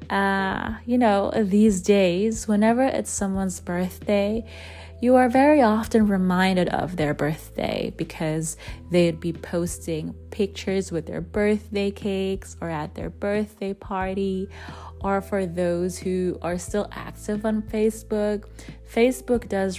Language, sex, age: English, female, 20-39